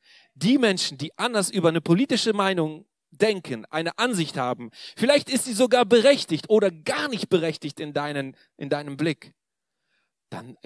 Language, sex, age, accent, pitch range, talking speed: German, male, 40-59, German, 145-230 Hz, 150 wpm